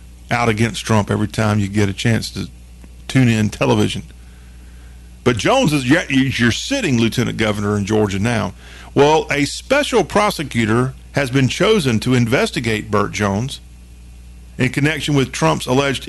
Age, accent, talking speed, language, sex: 50-69, American, 150 wpm, English, male